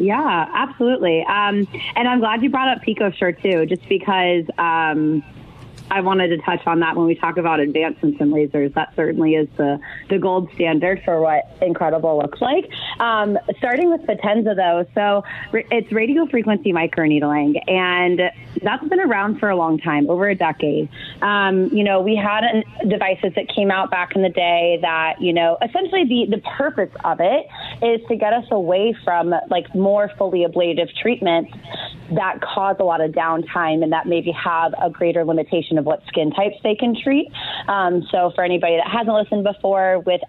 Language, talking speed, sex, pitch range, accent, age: English, 190 wpm, female, 165-205 Hz, American, 20-39